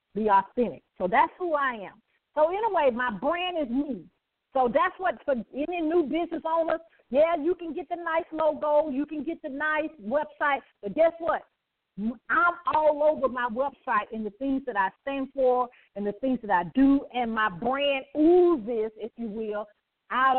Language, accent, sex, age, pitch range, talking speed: English, American, female, 40-59, 225-300 Hz, 190 wpm